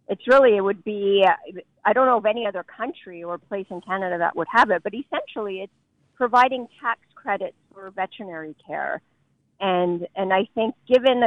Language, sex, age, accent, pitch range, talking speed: English, female, 40-59, American, 175-220 Hz, 180 wpm